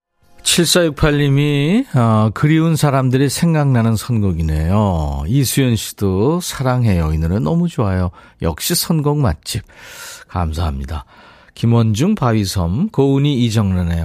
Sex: male